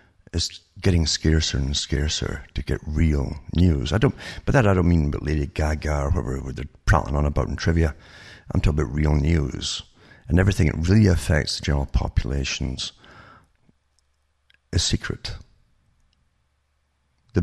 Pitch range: 75-90 Hz